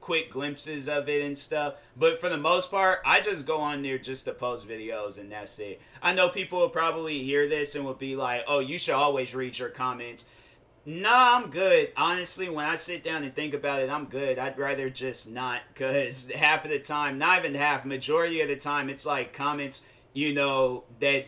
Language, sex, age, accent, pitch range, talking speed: English, male, 30-49, American, 130-165 Hz, 220 wpm